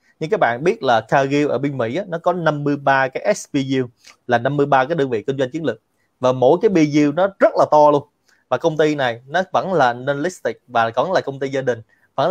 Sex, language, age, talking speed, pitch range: male, Vietnamese, 20-39, 235 wpm, 130-165 Hz